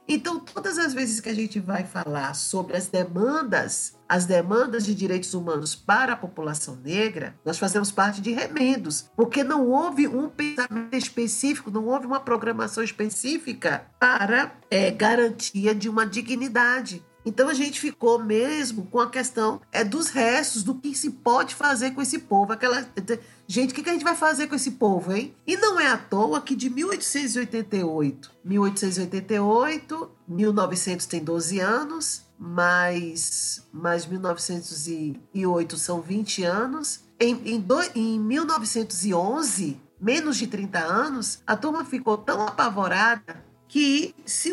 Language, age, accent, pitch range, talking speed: Portuguese, 50-69, Brazilian, 185-265 Hz, 135 wpm